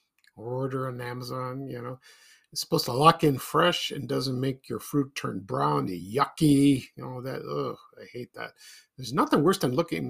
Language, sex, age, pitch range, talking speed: English, male, 50-69, 130-170 Hz, 185 wpm